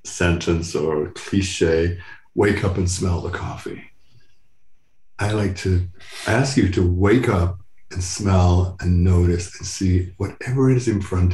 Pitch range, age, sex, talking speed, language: 90-115 Hz, 60-79, male, 145 wpm, English